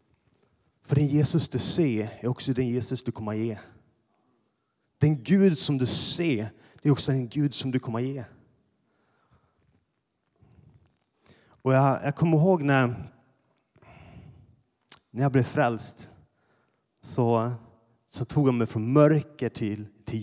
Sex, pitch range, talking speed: male, 120-150 Hz, 140 wpm